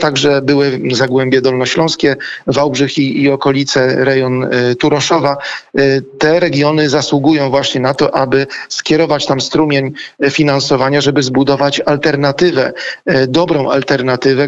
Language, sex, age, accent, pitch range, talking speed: Polish, male, 40-59, native, 135-145 Hz, 110 wpm